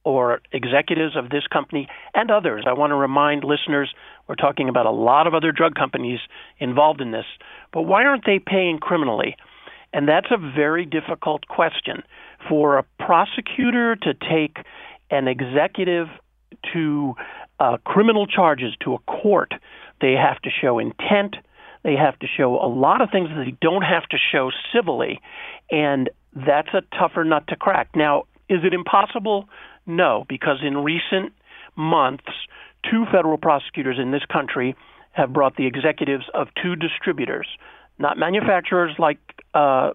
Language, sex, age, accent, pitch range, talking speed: English, male, 50-69, American, 145-190 Hz, 155 wpm